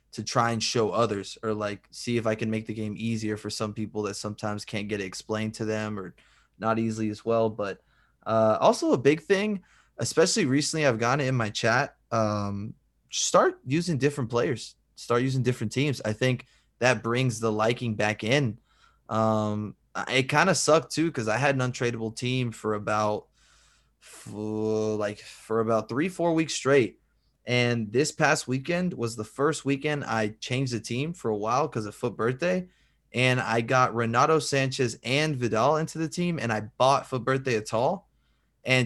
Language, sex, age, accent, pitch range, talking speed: English, male, 20-39, American, 110-140 Hz, 185 wpm